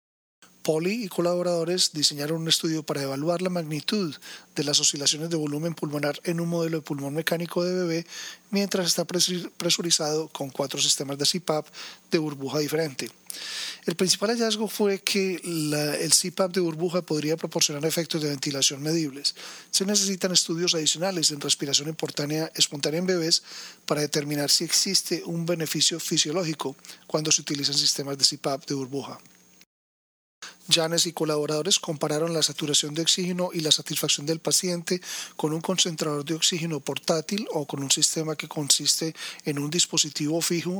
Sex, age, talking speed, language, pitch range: male, 40-59, 150 wpm, Spanish, 150-175 Hz